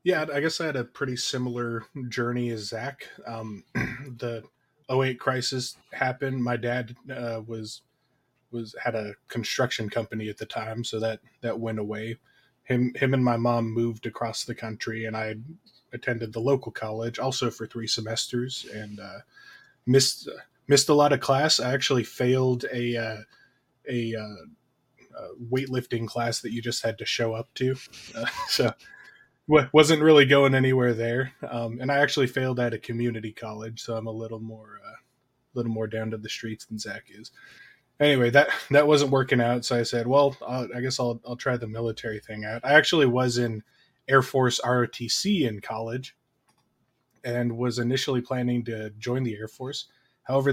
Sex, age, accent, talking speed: male, 20-39, American, 180 wpm